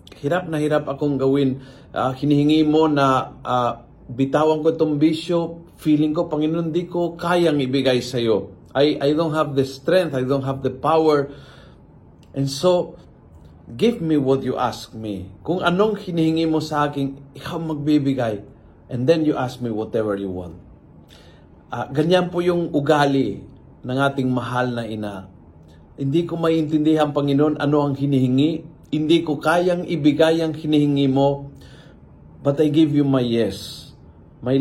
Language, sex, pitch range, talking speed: Filipino, male, 125-155 Hz, 155 wpm